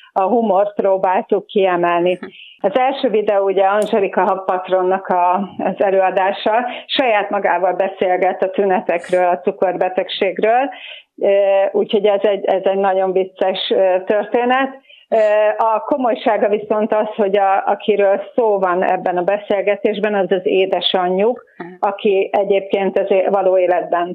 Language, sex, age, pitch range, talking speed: Hungarian, female, 40-59, 185-215 Hz, 115 wpm